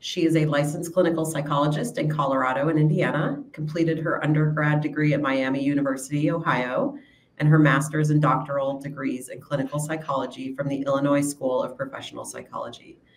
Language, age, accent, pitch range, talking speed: English, 40-59, American, 140-155 Hz, 160 wpm